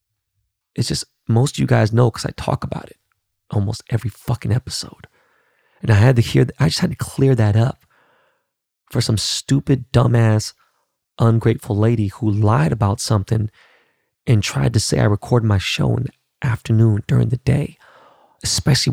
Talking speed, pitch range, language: 170 wpm, 105-135 Hz, English